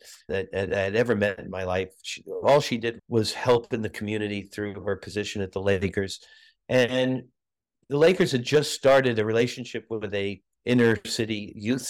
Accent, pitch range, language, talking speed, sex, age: American, 115-145 Hz, English, 180 wpm, male, 50-69